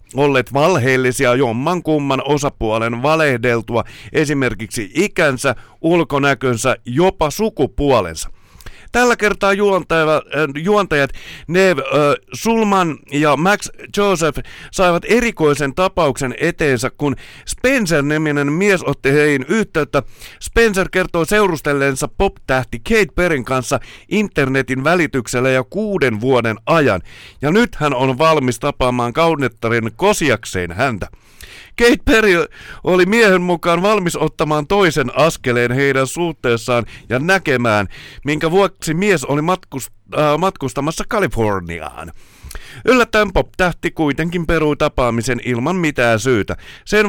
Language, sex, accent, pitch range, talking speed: Finnish, male, native, 125-175 Hz, 100 wpm